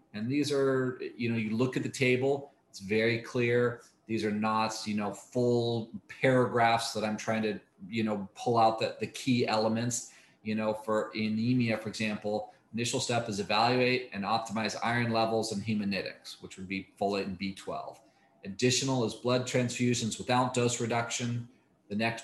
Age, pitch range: 40-59, 105-125 Hz